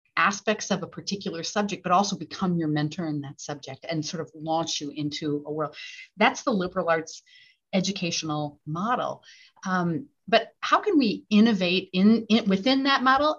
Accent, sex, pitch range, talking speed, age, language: American, female, 160-215 Hz, 170 wpm, 40-59, English